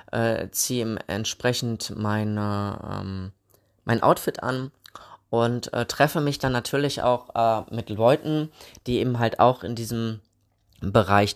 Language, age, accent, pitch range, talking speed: German, 20-39, German, 110-140 Hz, 130 wpm